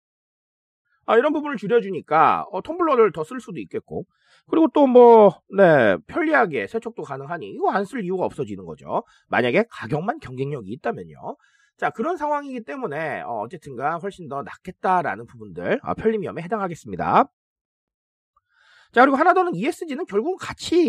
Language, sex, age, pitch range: Korean, male, 30-49, 185-300 Hz